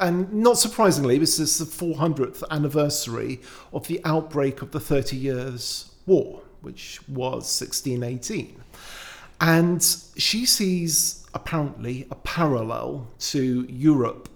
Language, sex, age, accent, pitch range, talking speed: English, male, 50-69, British, 120-155 Hz, 115 wpm